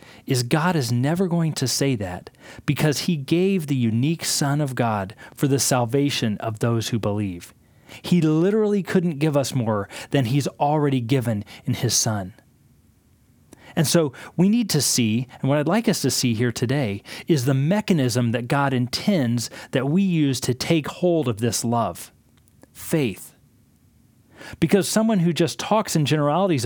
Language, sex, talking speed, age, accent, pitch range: English, male, 165 wpm, 40-59, American, 120-160 Hz